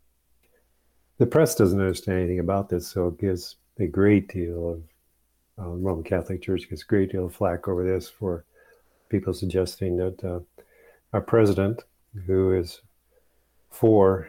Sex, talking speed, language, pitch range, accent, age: male, 150 wpm, English, 85-100 Hz, American, 50-69